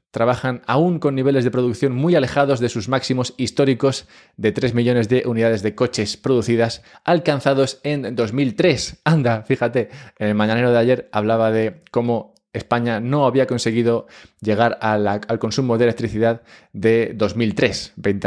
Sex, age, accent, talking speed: male, 20-39, Spanish, 145 wpm